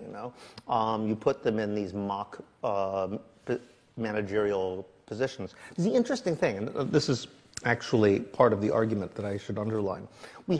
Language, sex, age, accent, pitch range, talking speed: English, male, 50-69, American, 105-145 Hz, 160 wpm